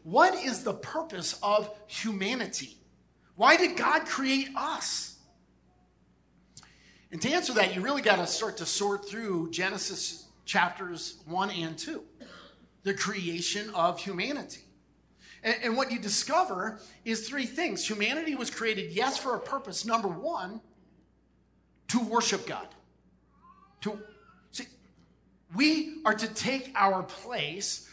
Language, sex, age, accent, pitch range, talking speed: English, male, 40-59, American, 195-235 Hz, 125 wpm